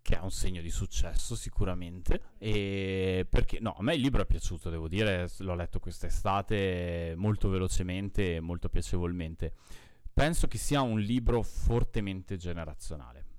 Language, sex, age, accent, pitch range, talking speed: Italian, male, 20-39, native, 90-110 Hz, 150 wpm